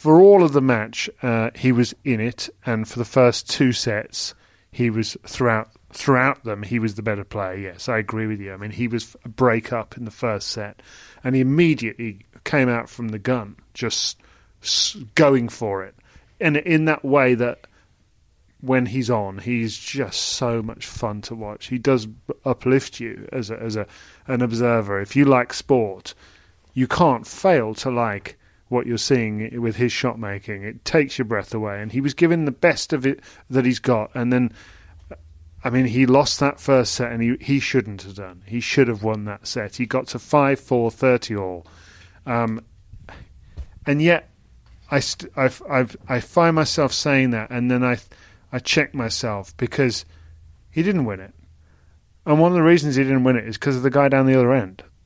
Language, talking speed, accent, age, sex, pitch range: English, 195 wpm, British, 30-49, male, 105-130 Hz